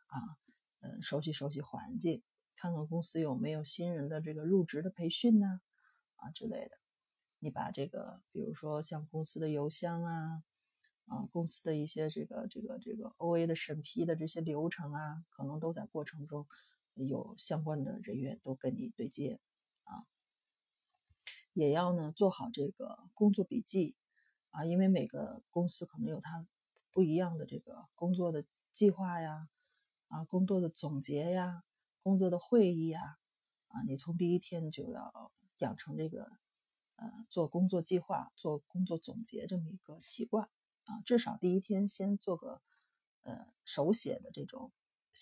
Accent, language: native, Chinese